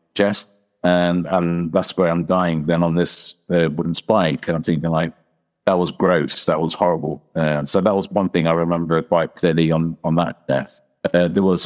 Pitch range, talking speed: 80-95 Hz, 205 wpm